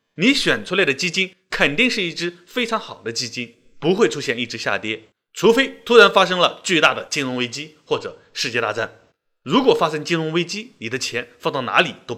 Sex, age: male, 20-39